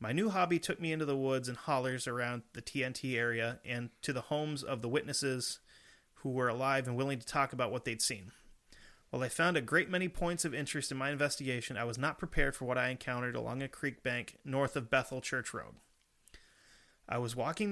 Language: English